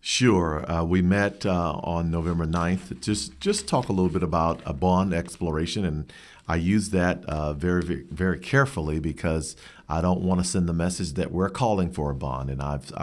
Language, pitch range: English, 80-95 Hz